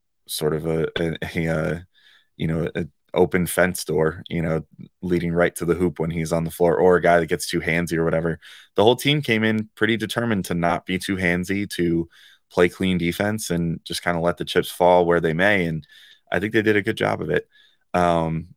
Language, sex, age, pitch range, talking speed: English, male, 20-39, 80-95 Hz, 225 wpm